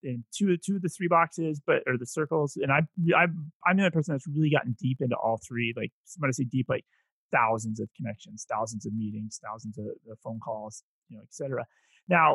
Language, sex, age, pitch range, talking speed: English, male, 30-49, 130-175 Hz, 230 wpm